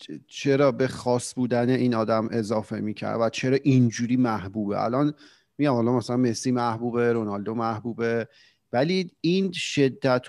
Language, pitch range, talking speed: Persian, 110-140 Hz, 135 wpm